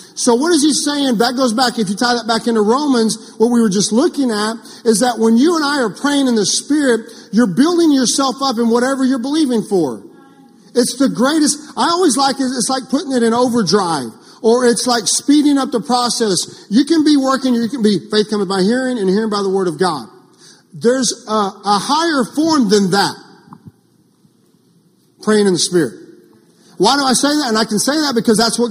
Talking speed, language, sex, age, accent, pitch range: 215 wpm, English, male, 40-59, American, 215-265 Hz